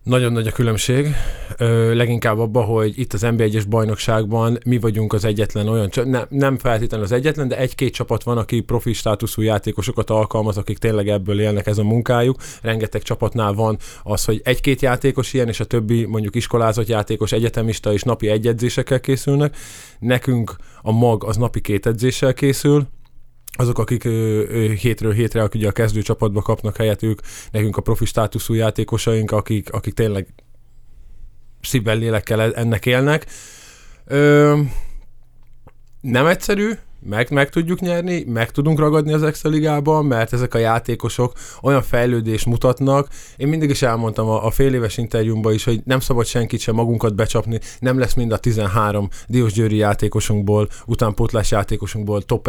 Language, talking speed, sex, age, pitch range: Hungarian, 155 wpm, male, 20-39, 110-125 Hz